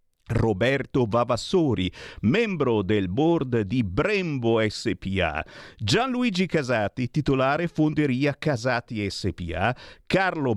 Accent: native